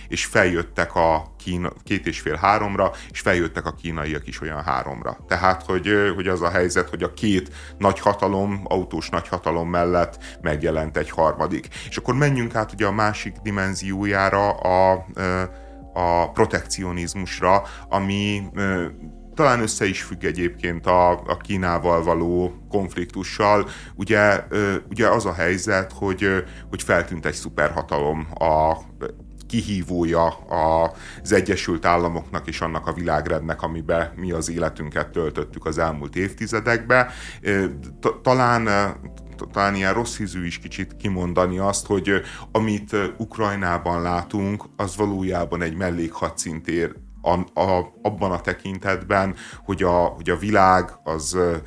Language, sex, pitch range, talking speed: Hungarian, male, 85-100 Hz, 125 wpm